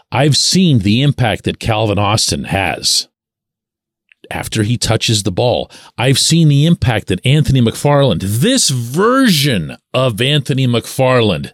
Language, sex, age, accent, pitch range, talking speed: English, male, 40-59, American, 130-185 Hz, 130 wpm